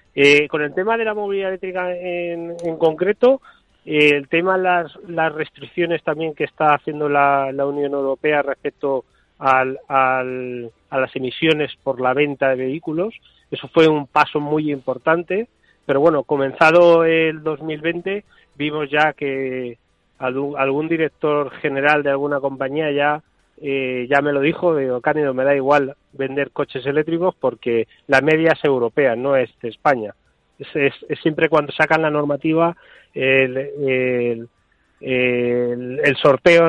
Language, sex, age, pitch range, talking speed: Spanish, male, 30-49, 135-160 Hz, 145 wpm